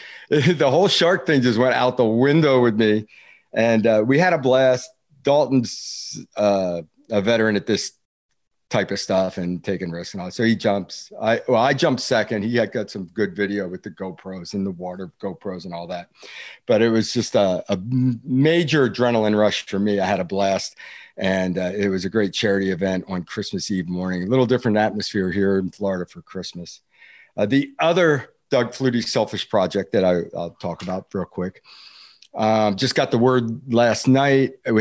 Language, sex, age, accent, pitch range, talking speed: English, male, 50-69, American, 100-130 Hz, 195 wpm